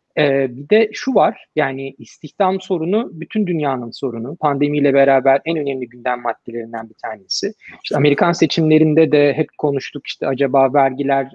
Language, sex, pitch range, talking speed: Turkish, male, 140-190 Hz, 150 wpm